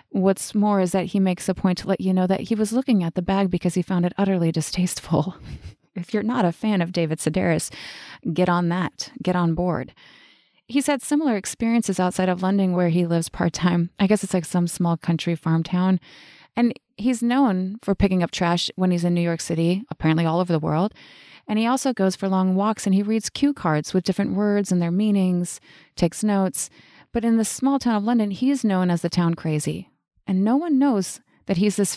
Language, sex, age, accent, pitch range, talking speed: English, female, 30-49, American, 175-215 Hz, 220 wpm